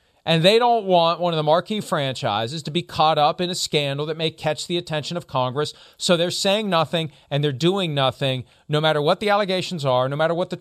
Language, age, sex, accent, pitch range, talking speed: English, 40-59, male, American, 150-205 Hz, 230 wpm